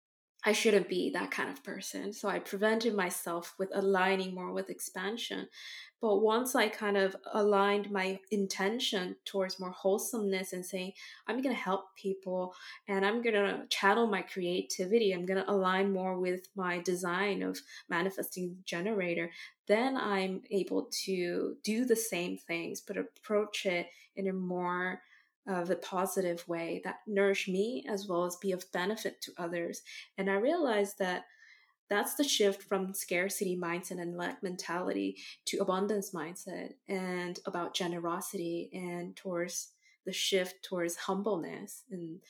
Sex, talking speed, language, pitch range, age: female, 155 wpm, English, 180-200 Hz, 20-39